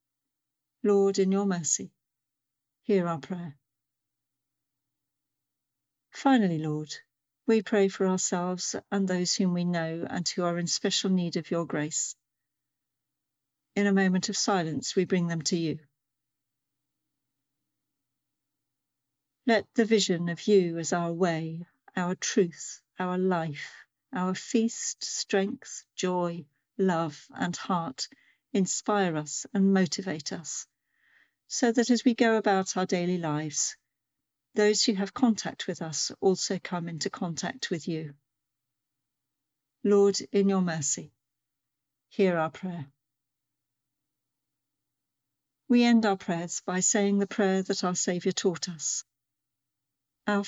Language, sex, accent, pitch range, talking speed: English, female, British, 140-190 Hz, 120 wpm